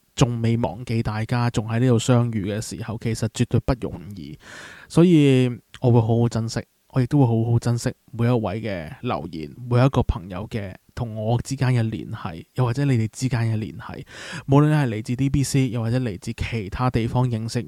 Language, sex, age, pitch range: Chinese, male, 20-39, 110-125 Hz